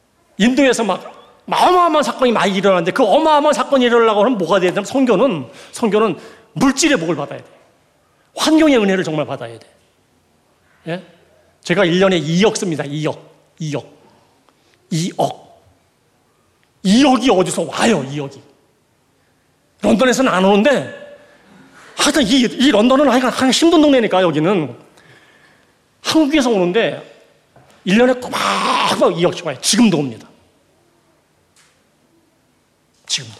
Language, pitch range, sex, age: Korean, 195-290 Hz, male, 40-59